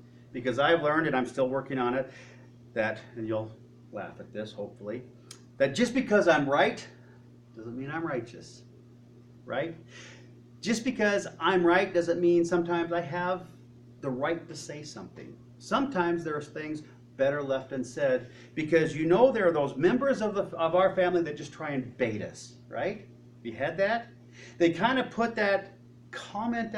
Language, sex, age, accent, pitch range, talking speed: English, male, 40-59, American, 120-175 Hz, 170 wpm